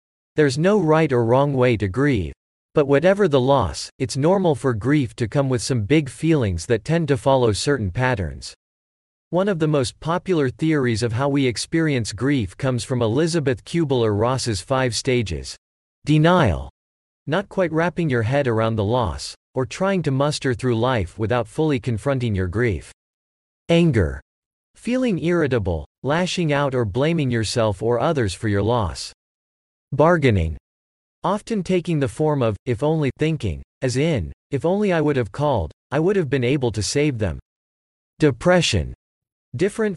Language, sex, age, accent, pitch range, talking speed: English, male, 50-69, American, 105-150 Hz, 160 wpm